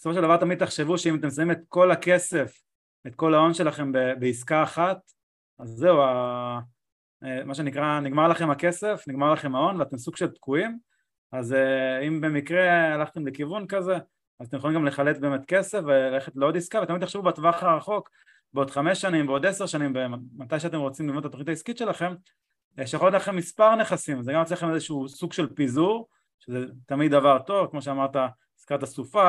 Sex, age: male, 20-39